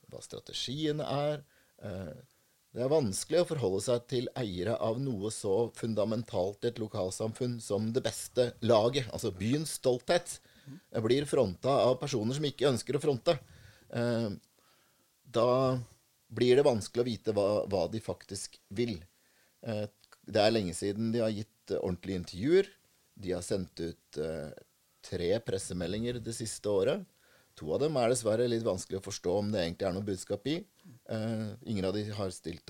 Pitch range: 100-120 Hz